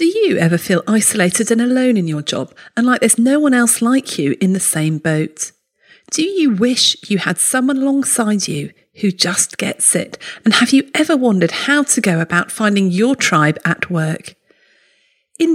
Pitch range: 180-260 Hz